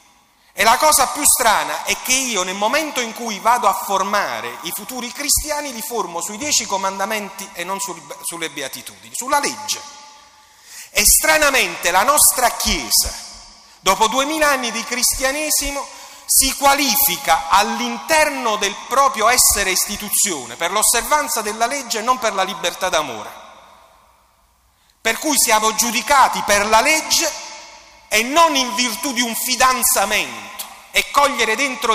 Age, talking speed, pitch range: 40-59, 135 wpm, 205-290 Hz